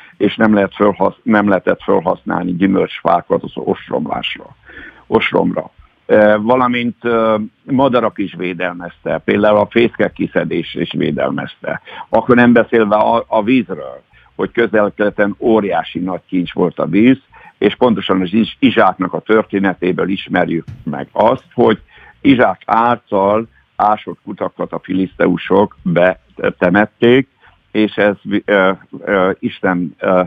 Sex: male